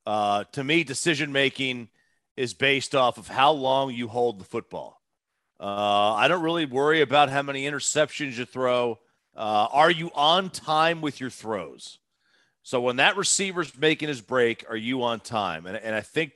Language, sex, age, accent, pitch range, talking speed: English, male, 40-59, American, 120-155 Hz, 180 wpm